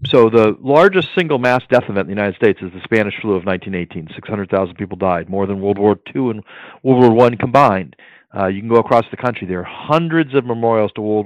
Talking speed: 245 wpm